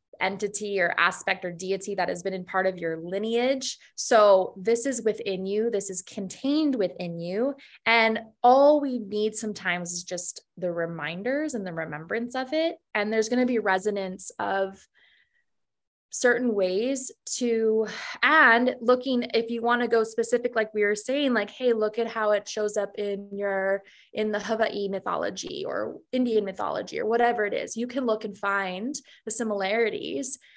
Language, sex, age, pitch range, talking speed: English, female, 20-39, 200-250 Hz, 170 wpm